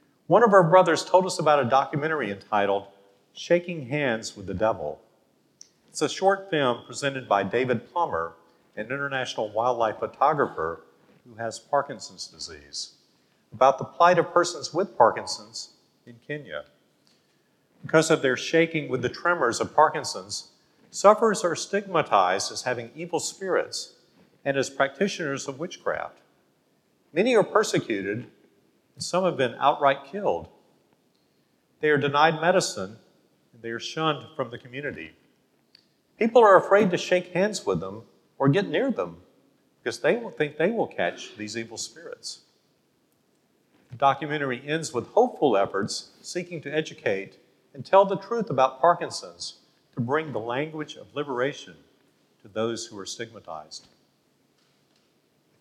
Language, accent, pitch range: English, American, 120-170 Hz